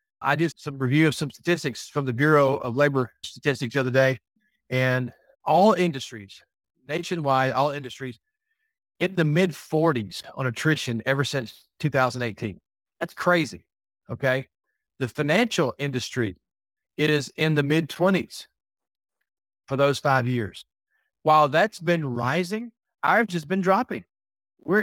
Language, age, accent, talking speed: English, 40-59, American, 135 wpm